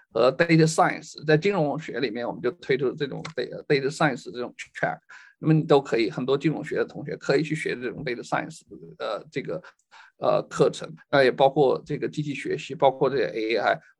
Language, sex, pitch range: Chinese, male, 150-195 Hz